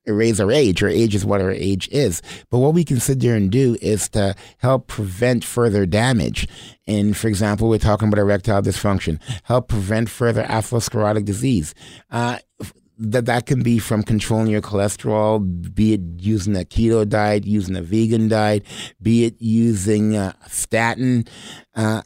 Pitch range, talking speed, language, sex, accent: 105-125 Hz, 170 wpm, English, male, American